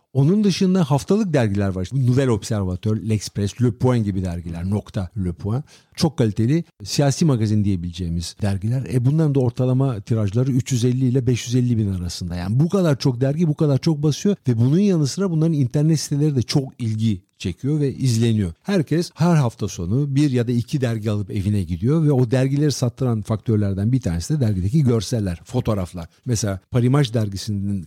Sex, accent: male, native